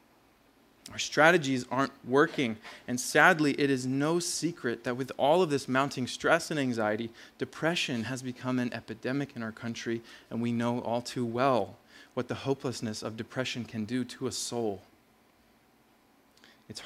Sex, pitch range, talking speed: male, 115-140 Hz, 155 wpm